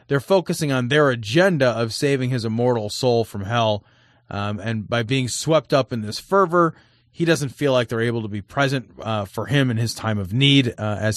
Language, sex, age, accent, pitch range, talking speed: English, male, 30-49, American, 120-155 Hz, 215 wpm